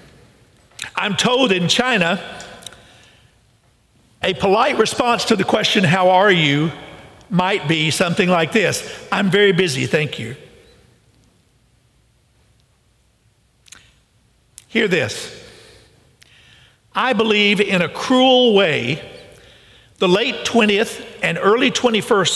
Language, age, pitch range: English, 50-69, 160-215 Hz